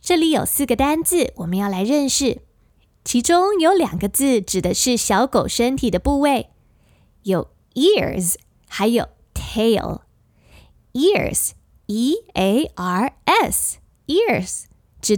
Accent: American